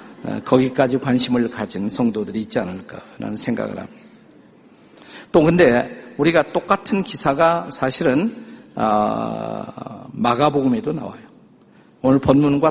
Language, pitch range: Korean, 130-185 Hz